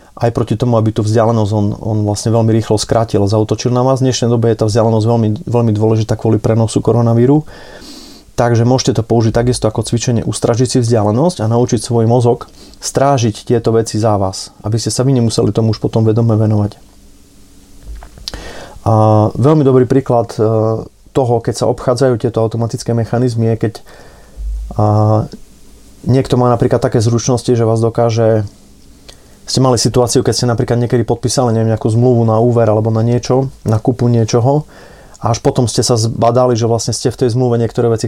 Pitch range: 110-125 Hz